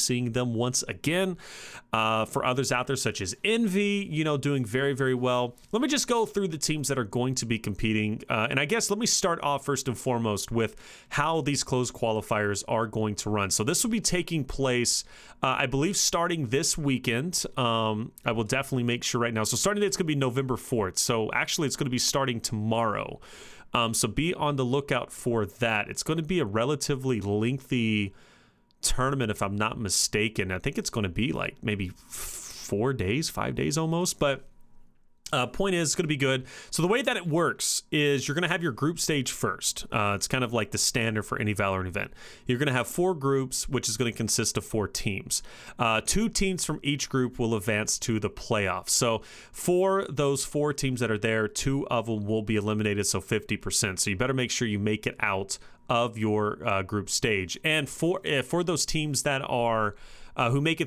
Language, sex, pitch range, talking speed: English, male, 110-150 Hz, 220 wpm